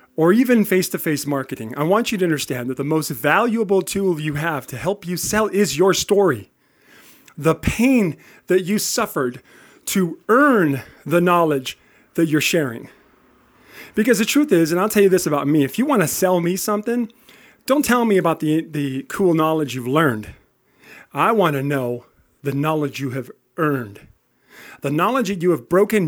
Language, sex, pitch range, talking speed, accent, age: English, male, 140-185 Hz, 175 wpm, American, 40-59